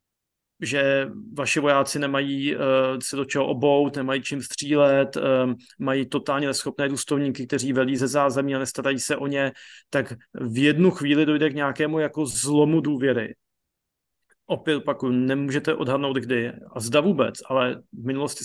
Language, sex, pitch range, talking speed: Slovak, male, 130-145 Hz, 155 wpm